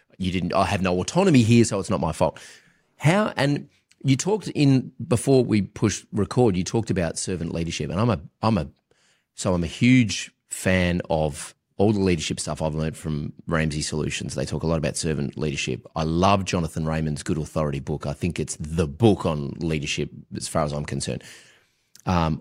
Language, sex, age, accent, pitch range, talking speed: English, male, 30-49, Australian, 80-115 Hz, 195 wpm